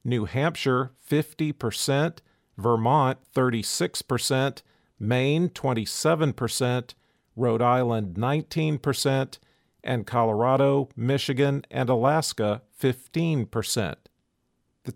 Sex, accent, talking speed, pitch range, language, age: male, American, 90 wpm, 115-140 Hz, English, 50-69